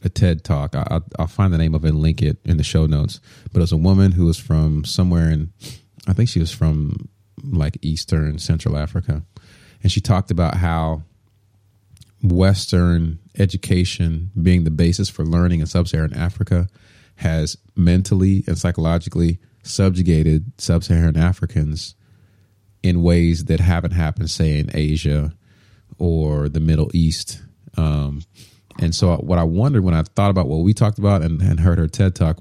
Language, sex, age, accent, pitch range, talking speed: English, male, 30-49, American, 80-100 Hz, 165 wpm